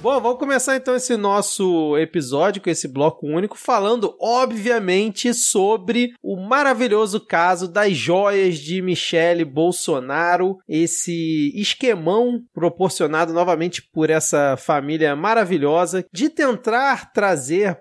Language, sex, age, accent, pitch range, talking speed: Portuguese, male, 20-39, Brazilian, 165-225 Hz, 110 wpm